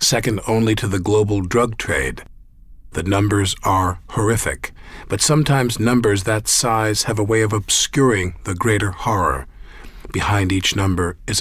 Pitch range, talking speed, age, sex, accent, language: 95-115 Hz, 145 wpm, 50-69, male, American, English